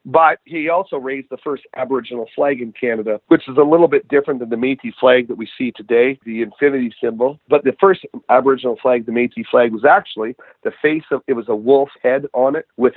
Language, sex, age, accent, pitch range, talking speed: English, male, 40-59, American, 120-165 Hz, 220 wpm